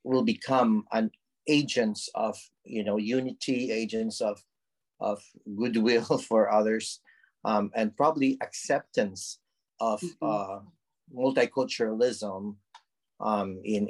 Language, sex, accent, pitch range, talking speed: English, male, Filipino, 105-170 Hz, 100 wpm